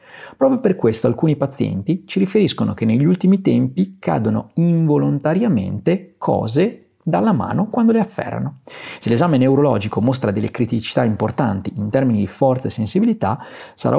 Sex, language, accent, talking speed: male, Italian, native, 140 wpm